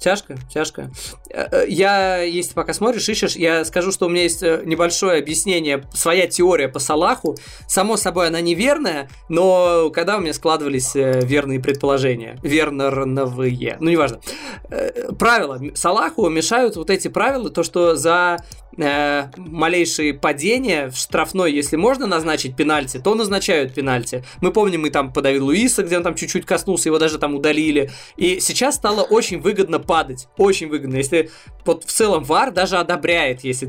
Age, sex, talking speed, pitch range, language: 20-39, male, 150 wpm, 140-185 Hz, Russian